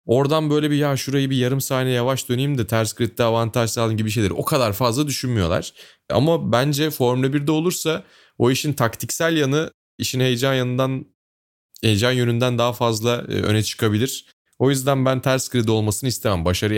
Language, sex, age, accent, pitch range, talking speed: Turkish, male, 30-49, native, 100-135 Hz, 170 wpm